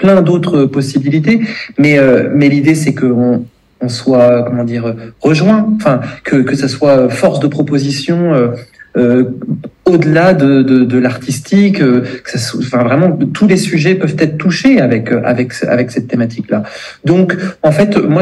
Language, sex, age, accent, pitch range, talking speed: French, male, 40-59, French, 125-155 Hz, 160 wpm